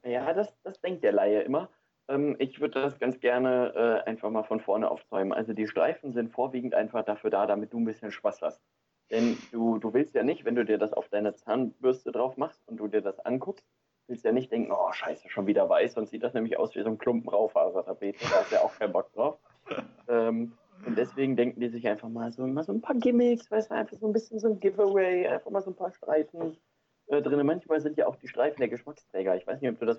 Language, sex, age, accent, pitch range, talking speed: German, male, 20-39, German, 115-140 Hz, 245 wpm